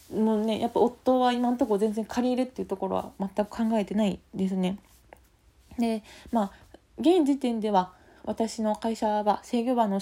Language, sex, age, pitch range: Japanese, female, 20-39, 195-240 Hz